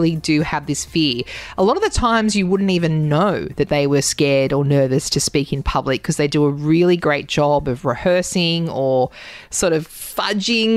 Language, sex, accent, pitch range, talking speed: English, female, Australian, 155-215 Hz, 200 wpm